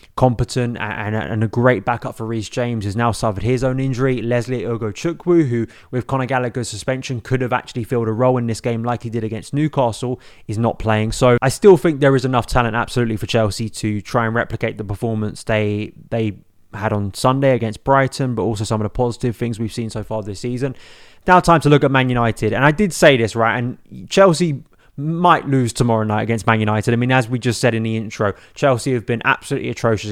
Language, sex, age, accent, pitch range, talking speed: English, male, 20-39, British, 110-130 Hz, 225 wpm